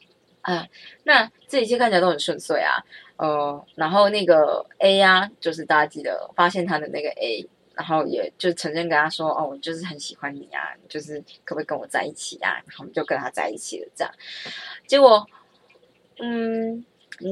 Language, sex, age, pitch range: Chinese, female, 20-39, 160-210 Hz